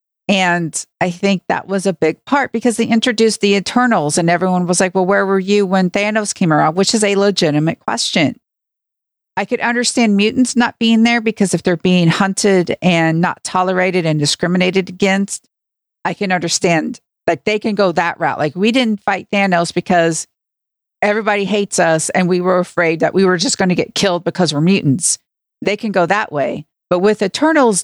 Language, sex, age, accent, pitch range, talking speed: English, female, 50-69, American, 175-210 Hz, 190 wpm